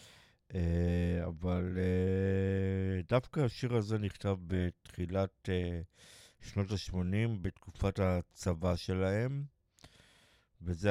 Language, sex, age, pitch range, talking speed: Hebrew, male, 50-69, 90-110 Hz, 85 wpm